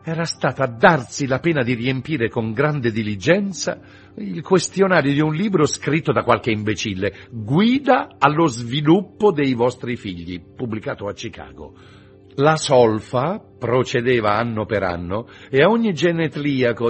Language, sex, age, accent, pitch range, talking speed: Italian, male, 50-69, native, 100-150 Hz, 135 wpm